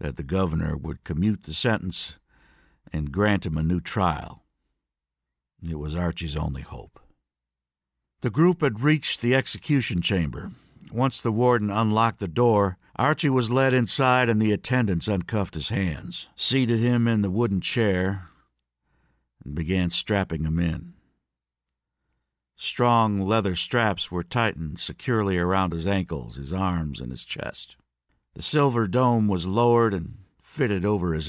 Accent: American